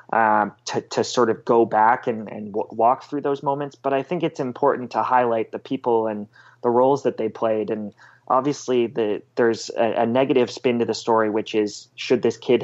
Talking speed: 215 wpm